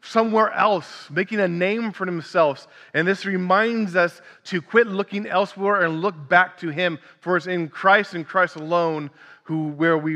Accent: American